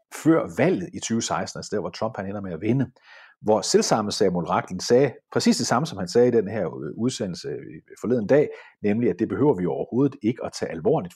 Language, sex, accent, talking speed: Danish, male, native, 215 wpm